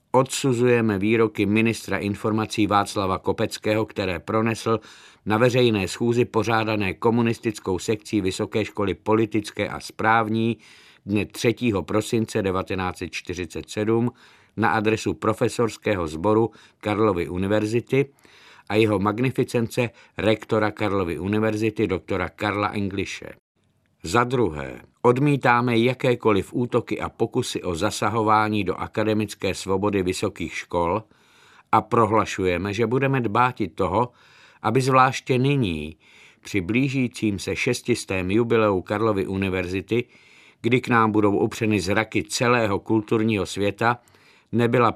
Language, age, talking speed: Czech, 50-69, 105 wpm